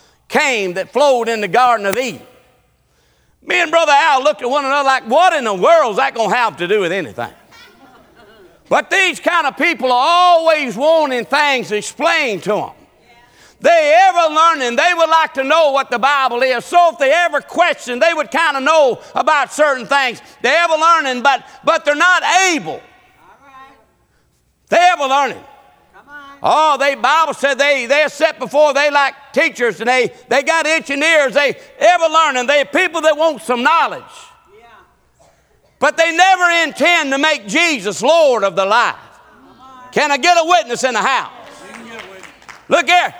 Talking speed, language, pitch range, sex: 175 wpm, English, 260-330 Hz, male